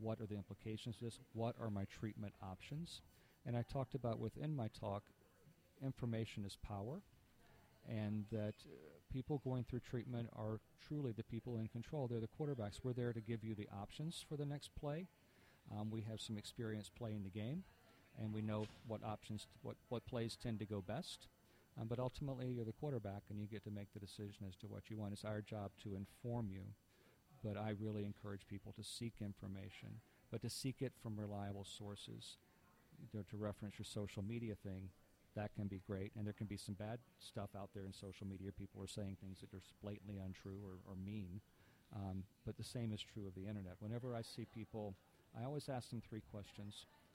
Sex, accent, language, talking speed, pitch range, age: male, American, English, 205 wpm, 100-120 Hz, 50-69